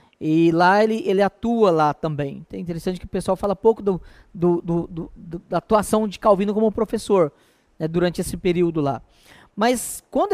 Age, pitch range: 20-39, 165-225 Hz